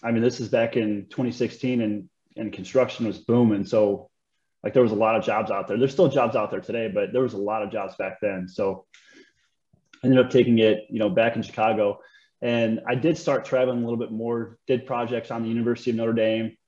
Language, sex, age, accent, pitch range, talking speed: English, male, 20-39, American, 115-135 Hz, 235 wpm